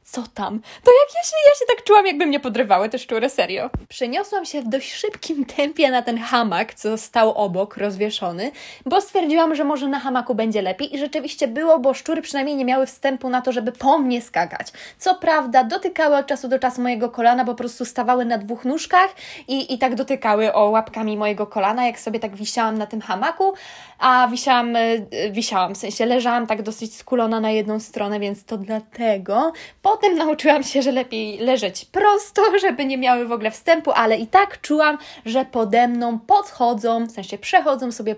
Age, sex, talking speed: 20-39, female, 195 wpm